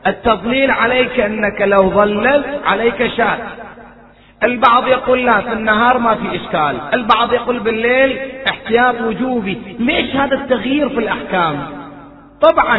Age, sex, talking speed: 30-49, male, 120 wpm